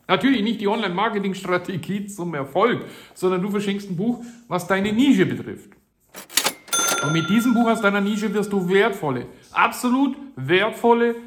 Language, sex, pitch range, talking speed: German, male, 170-225 Hz, 145 wpm